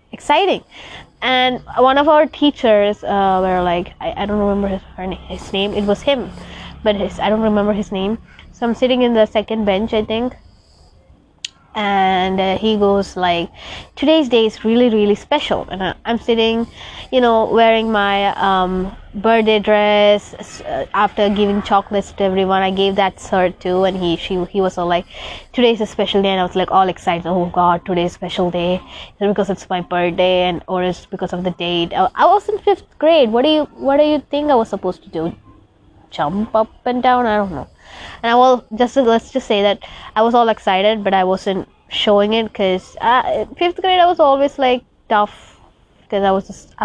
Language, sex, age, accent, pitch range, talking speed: English, female, 20-39, Indian, 185-245 Hz, 200 wpm